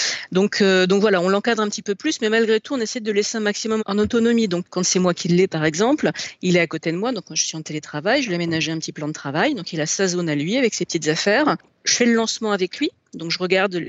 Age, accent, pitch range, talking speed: 40-59, French, 165-225 Hz, 305 wpm